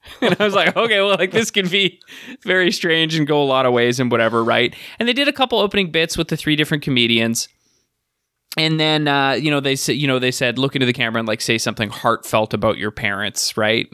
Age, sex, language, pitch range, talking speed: 20-39, male, English, 125-160 Hz, 245 wpm